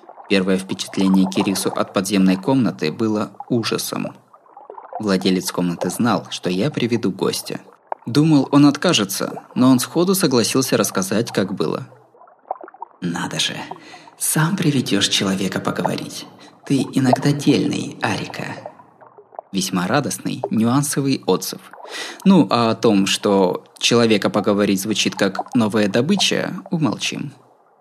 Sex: male